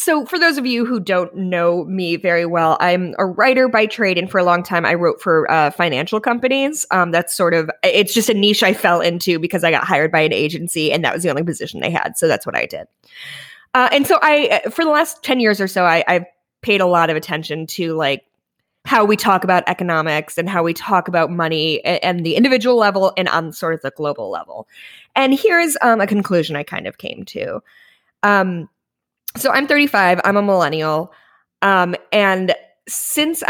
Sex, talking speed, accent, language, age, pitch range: female, 220 wpm, American, English, 20-39, 175-225 Hz